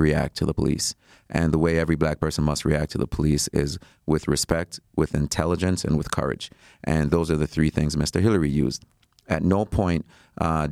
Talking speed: 200 wpm